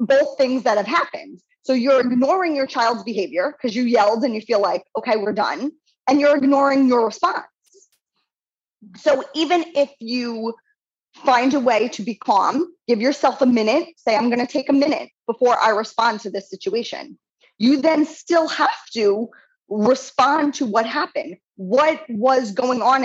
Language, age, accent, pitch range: English, 20-39, American, 225-290 Hz